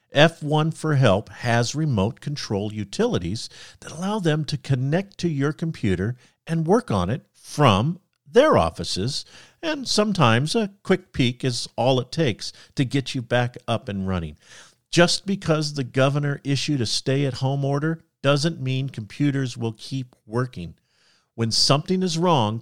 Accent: American